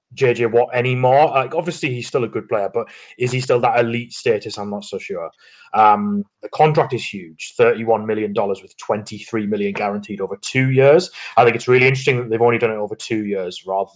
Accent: British